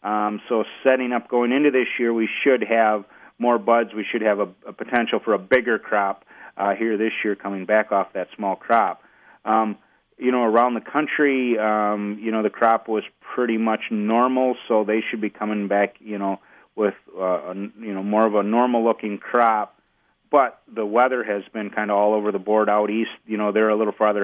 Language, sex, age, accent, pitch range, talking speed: English, male, 30-49, American, 100-115 Hz, 210 wpm